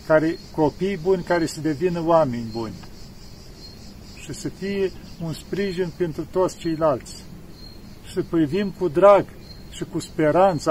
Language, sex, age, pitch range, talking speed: Romanian, male, 50-69, 150-180 Hz, 135 wpm